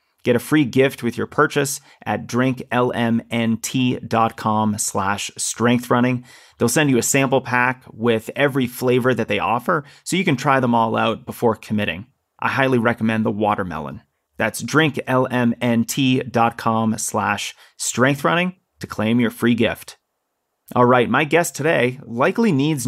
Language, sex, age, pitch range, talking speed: English, male, 30-49, 110-130 Hz, 140 wpm